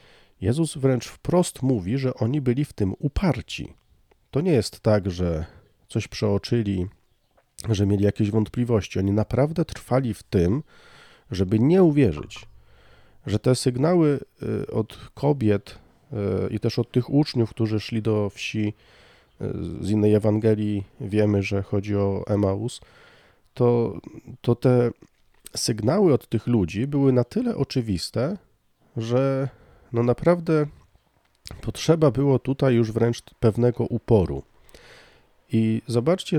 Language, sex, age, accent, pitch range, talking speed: Polish, male, 40-59, native, 105-135 Hz, 120 wpm